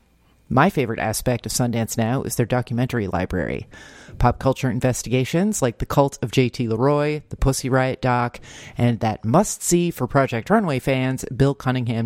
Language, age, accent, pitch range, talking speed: English, 40-59, American, 120-160 Hz, 160 wpm